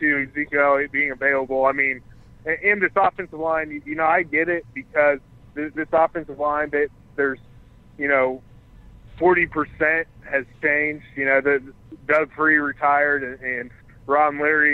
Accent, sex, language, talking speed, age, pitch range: American, male, English, 140 wpm, 20-39, 130-150 Hz